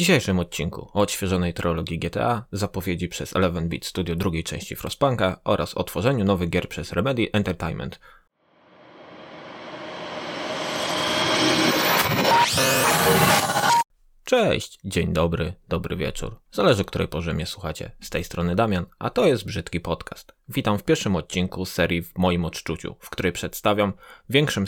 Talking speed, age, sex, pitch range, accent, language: 135 wpm, 20-39, male, 90-110 Hz, native, Polish